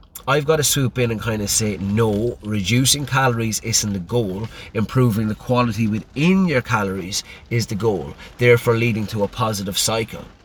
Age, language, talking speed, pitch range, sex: 30-49, English, 170 wpm, 110-145 Hz, male